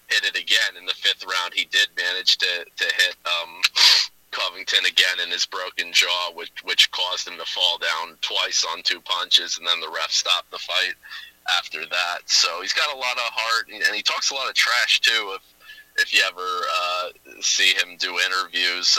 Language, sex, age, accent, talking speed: English, male, 30-49, American, 200 wpm